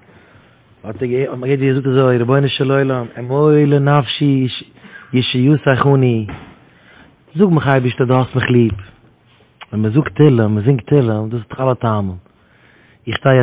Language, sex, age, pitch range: English, male, 30-49, 115-140 Hz